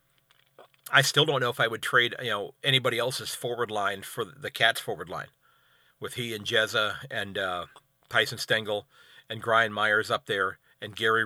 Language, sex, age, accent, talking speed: English, male, 40-59, American, 180 wpm